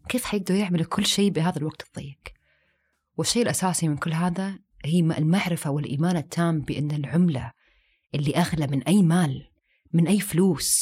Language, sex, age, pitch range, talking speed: Arabic, female, 20-39, 155-200 Hz, 150 wpm